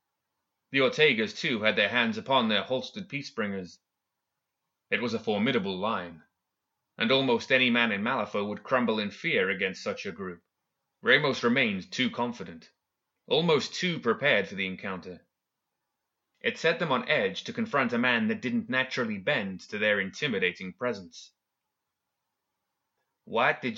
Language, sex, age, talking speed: English, male, 30-49, 145 wpm